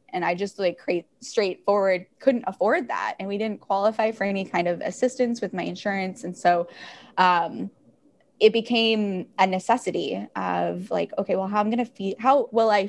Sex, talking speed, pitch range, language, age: female, 185 wpm, 190-250 Hz, English, 10-29